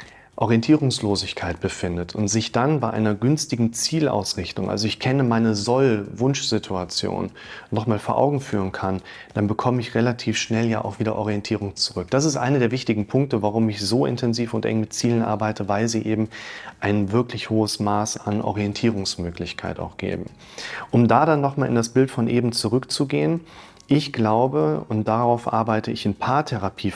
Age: 30-49